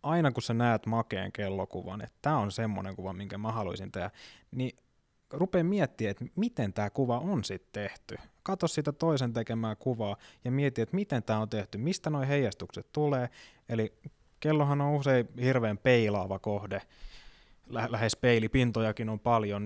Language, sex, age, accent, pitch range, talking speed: Finnish, male, 20-39, native, 105-130 Hz, 160 wpm